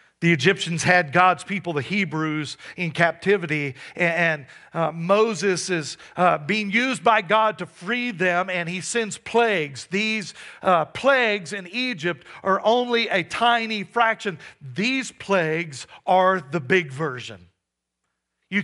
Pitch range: 155-220 Hz